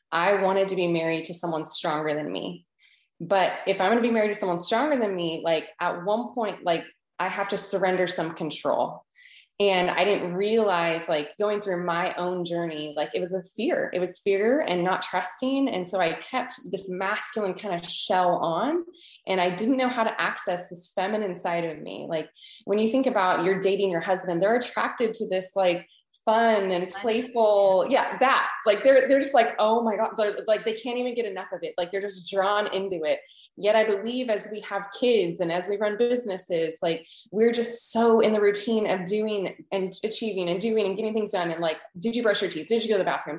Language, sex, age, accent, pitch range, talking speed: English, female, 20-39, American, 180-225 Hz, 220 wpm